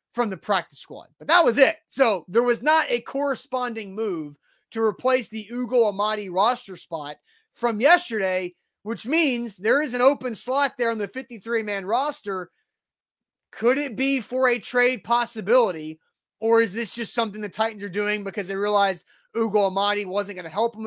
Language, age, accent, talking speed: English, 30-49, American, 180 wpm